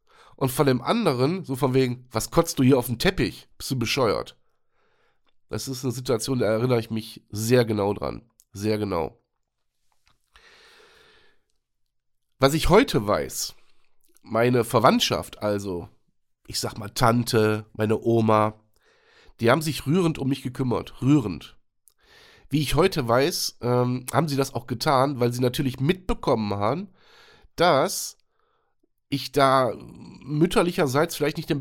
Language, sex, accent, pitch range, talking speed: German, male, German, 115-155 Hz, 135 wpm